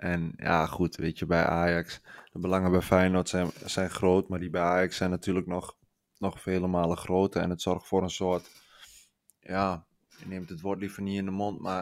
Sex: male